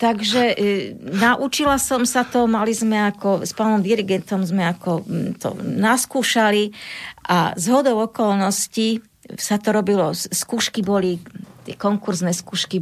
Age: 40-59